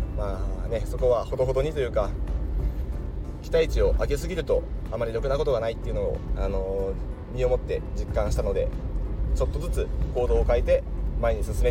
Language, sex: Japanese, male